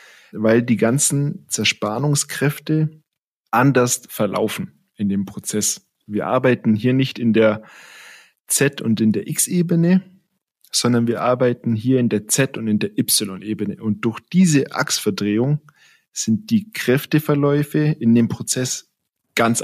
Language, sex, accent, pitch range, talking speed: German, male, German, 110-140 Hz, 130 wpm